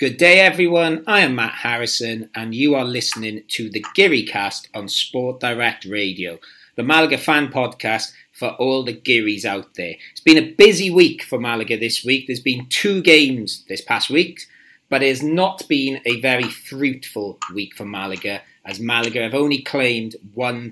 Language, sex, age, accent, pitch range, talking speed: English, male, 30-49, British, 115-135 Hz, 180 wpm